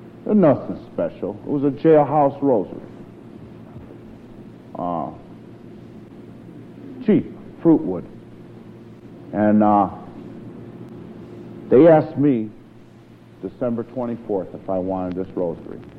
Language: English